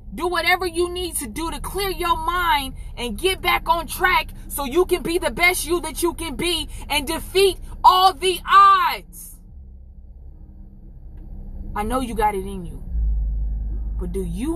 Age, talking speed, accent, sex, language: 20-39, 170 wpm, American, female, English